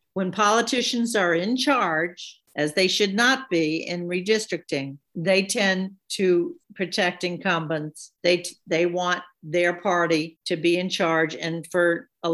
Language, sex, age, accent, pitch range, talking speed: English, female, 50-69, American, 160-190 Hz, 145 wpm